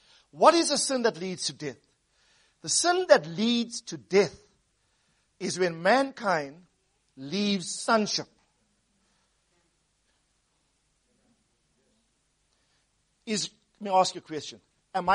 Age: 50-69